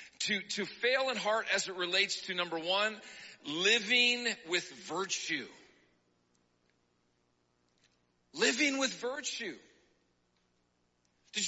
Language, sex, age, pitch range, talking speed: English, male, 40-59, 160-255 Hz, 95 wpm